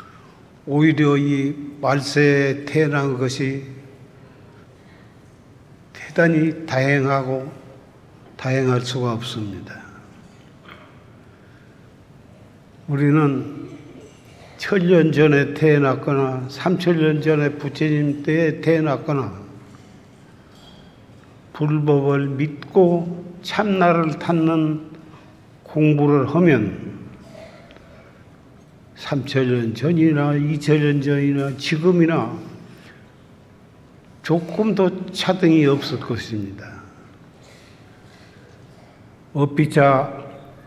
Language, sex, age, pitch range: Korean, male, 60-79, 135-160 Hz